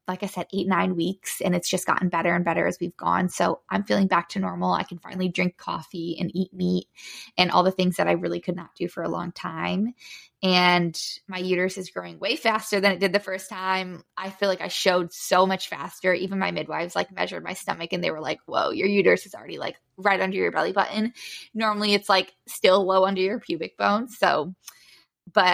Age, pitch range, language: 10-29, 180-220 Hz, English